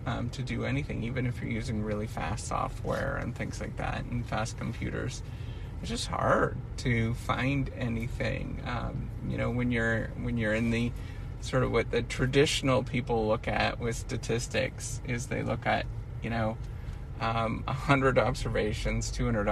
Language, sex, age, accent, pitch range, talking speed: English, male, 30-49, American, 110-130 Hz, 165 wpm